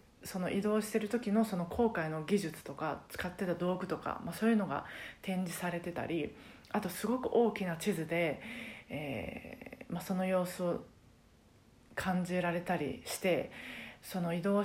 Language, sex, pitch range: Japanese, female, 175-225 Hz